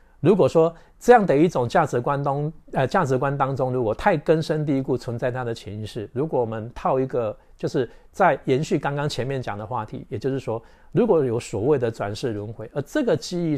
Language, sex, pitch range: Chinese, male, 115-145 Hz